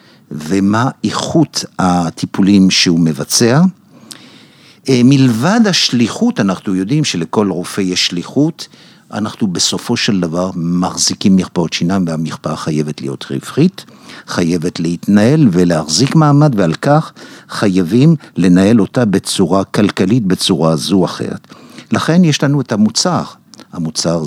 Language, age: Hebrew, 60-79